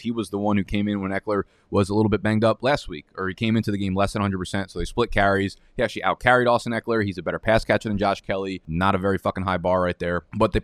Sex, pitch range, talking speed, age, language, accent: male, 100-120 Hz, 305 wpm, 20-39, English, American